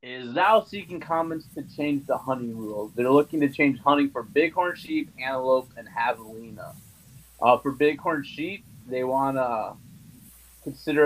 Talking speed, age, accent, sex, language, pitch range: 150 wpm, 20-39, American, male, English, 120-150 Hz